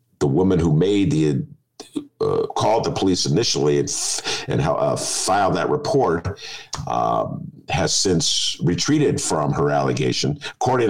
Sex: male